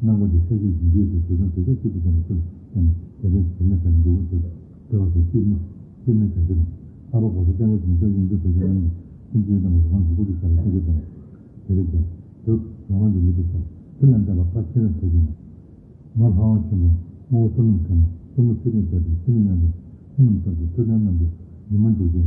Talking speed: 80 wpm